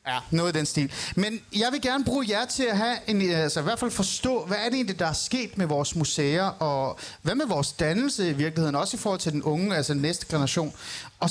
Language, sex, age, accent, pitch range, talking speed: Danish, male, 30-49, native, 150-215 Hz, 250 wpm